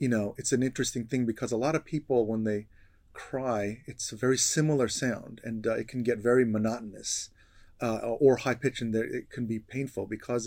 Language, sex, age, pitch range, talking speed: English, male, 30-49, 115-140 Hz, 210 wpm